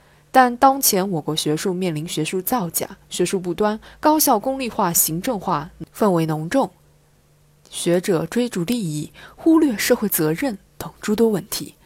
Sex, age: female, 20-39